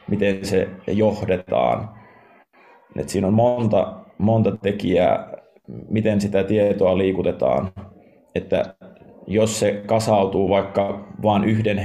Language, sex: Finnish, male